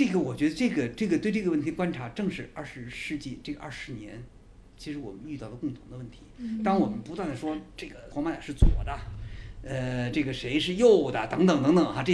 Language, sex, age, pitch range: English, male, 50-69, 110-180 Hz